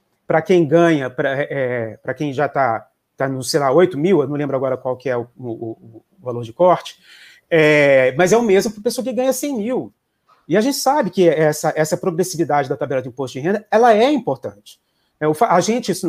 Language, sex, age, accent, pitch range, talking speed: Portuguese, male, 40-59, Brazilian, 150-215 Hz, 220 wpm